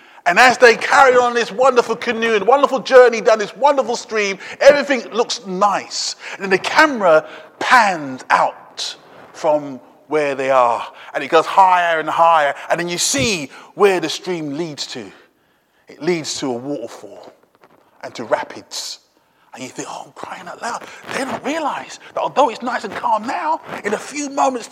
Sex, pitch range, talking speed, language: male, 180-270 Hz, 175 wpm, English